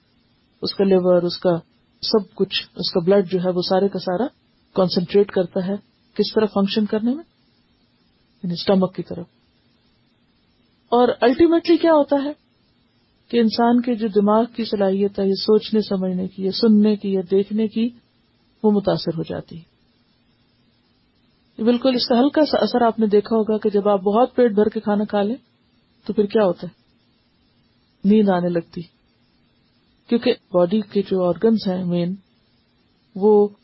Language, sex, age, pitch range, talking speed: Urdu, female, 40-59, 185-225 Hz, 165 wpm